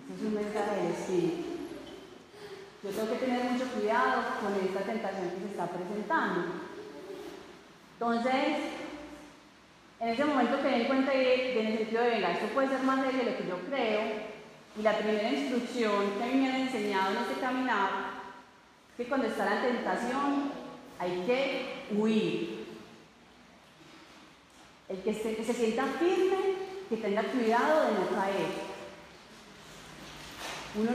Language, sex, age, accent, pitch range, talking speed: Spanish, female, 30-49, Colombian, 215-285 Hz, 145 wpm